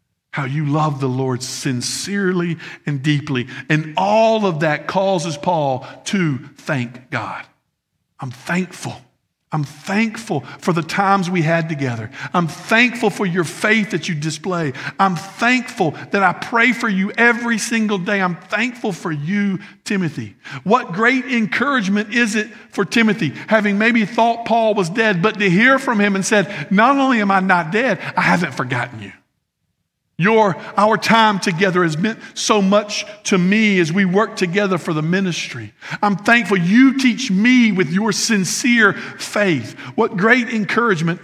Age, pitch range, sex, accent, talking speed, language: 50-69, 145-210 Hz, male, American, 160 wpm, English